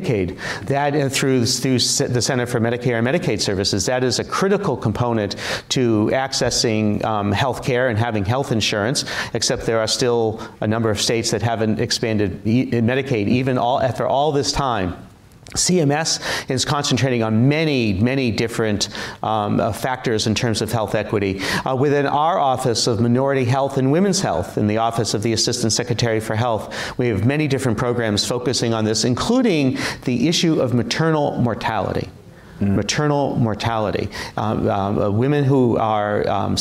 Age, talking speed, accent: 40-59, 165 wpm, American